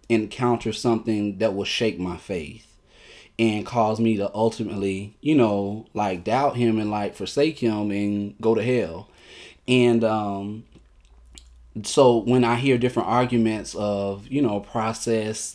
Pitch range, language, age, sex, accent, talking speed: 110-140 Hz, English, 20-39, male, American, 145 wpm